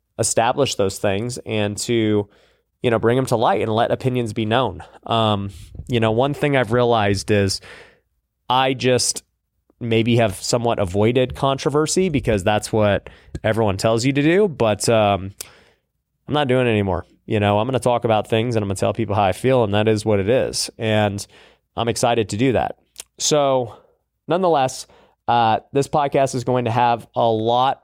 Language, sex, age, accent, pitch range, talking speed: English, male, 20-39, American, 105-125 Hz, 180 wpm